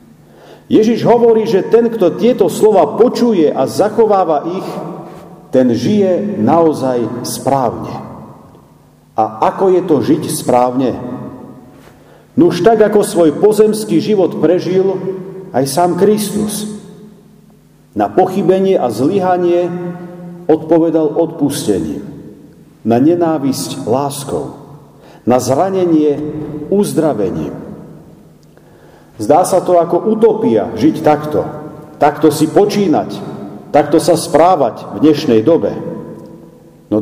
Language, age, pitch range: Slovak, 50-69, 150-190 Hz